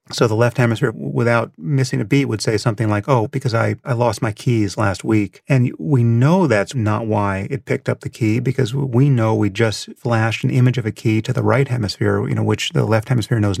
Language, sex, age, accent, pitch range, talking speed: English, male, 30-49, American, 105-135 Hz, 240 wpm